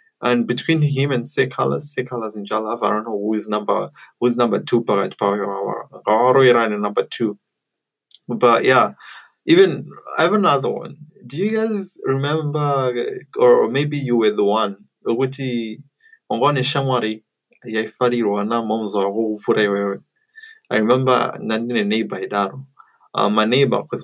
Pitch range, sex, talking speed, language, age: 105-140 Hz, male, 135 wpm, English, 20-39